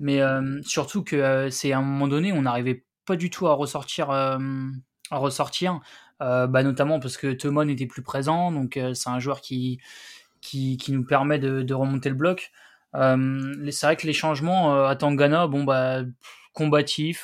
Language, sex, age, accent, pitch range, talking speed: French, male, 20-39, French, 135-155 Hz, 195 wpm